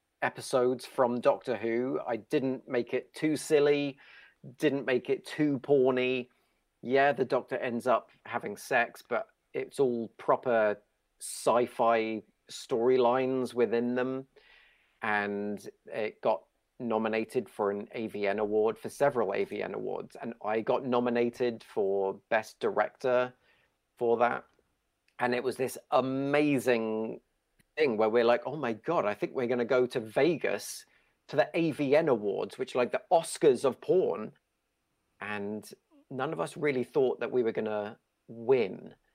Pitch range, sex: 110-135 Hz, male